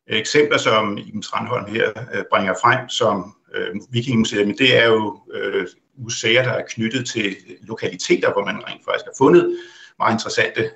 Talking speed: 155 wpm